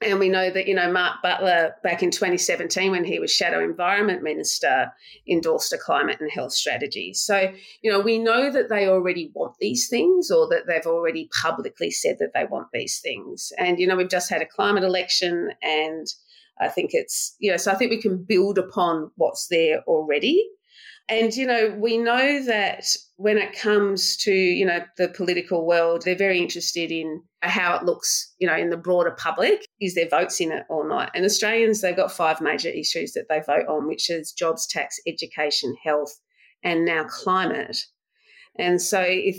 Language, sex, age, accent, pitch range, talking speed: English, female, 40-59, Australian, 175-250 Hz, 195 wpm